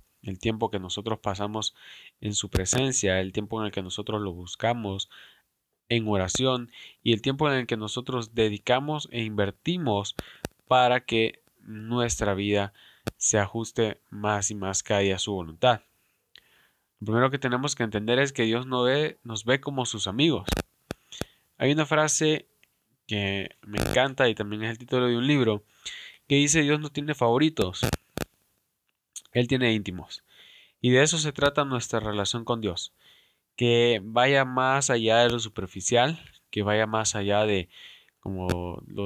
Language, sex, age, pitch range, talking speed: Spanish, male, 20-39, 100-125 Hz, 160 wpm